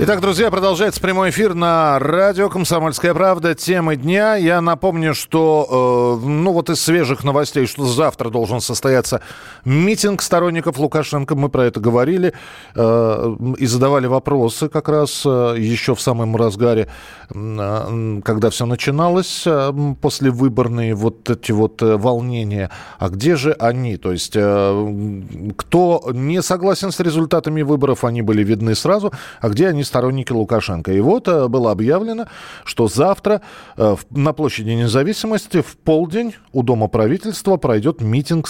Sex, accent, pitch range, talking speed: male, native, 115-165 Hz, 135 wpm